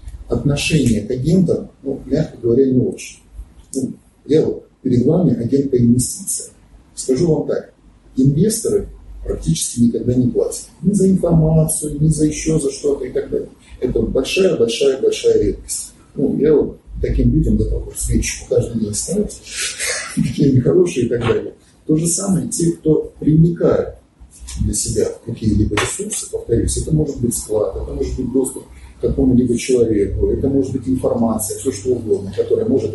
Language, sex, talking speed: Russian, male, 150 wpm